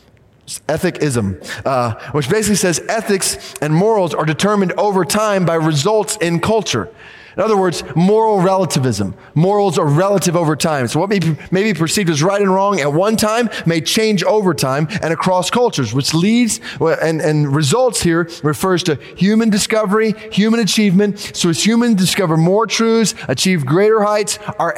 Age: 20-39